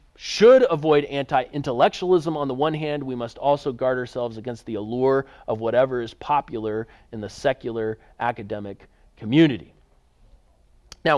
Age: 30-49